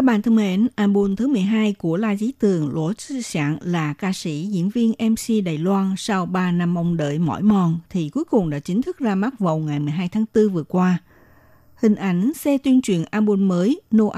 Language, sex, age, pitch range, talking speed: Vietnamese, female, 60-79, 170-220 Hz, 220 wpm